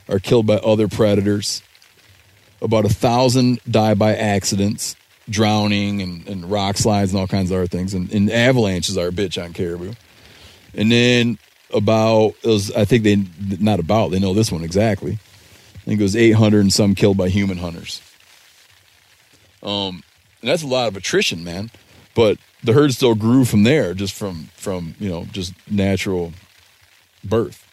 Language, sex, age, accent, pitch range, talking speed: English, male, 30-49, American, 95-110 Hz, 170 wpm